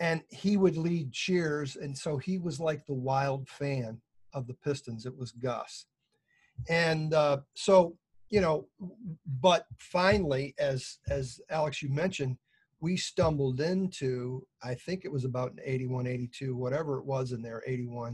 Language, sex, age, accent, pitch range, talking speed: English, male, 50-69, American, 130-155 Hz, 155 wpm